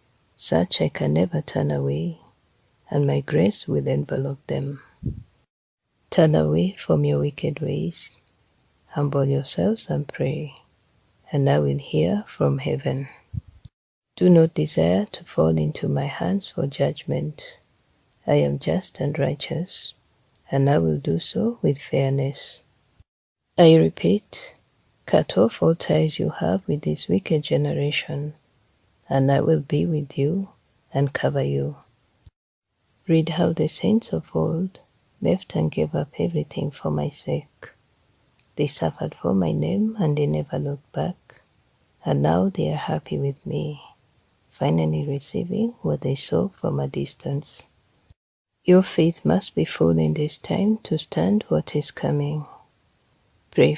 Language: English